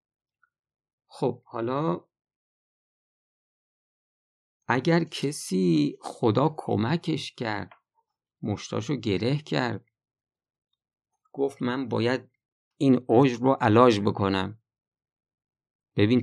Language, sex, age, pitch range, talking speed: Persian, male, 50-69, 110-155 Hz, 75 wpm